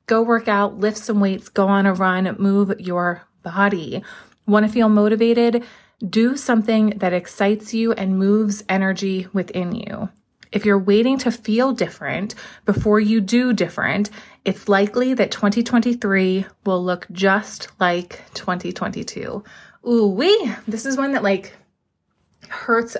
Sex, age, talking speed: female, 30-49, 140 wpm